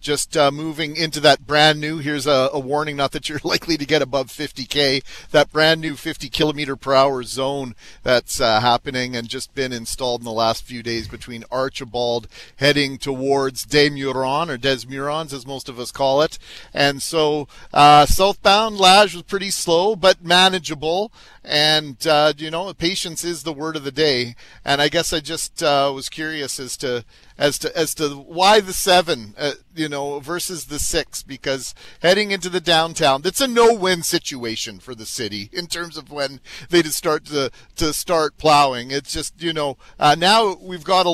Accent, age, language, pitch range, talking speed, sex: American, 40-59, English, 135-165 Hz, 190 wpm, male